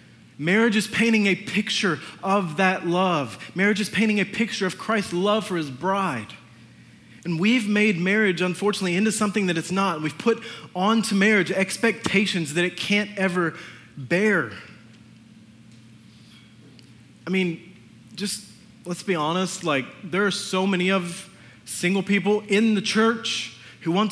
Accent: American